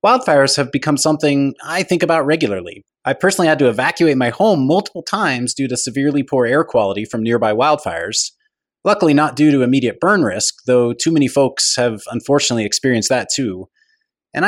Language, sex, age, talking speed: English, male, 30-49, 180 wpm